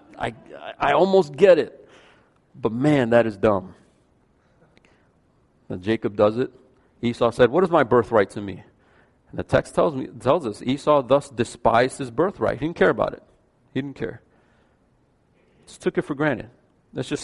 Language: English